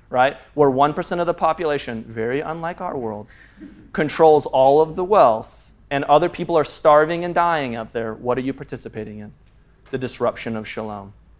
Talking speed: 175 wpm